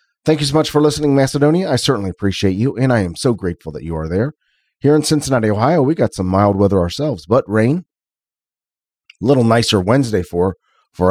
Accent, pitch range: American, 95-135 Hz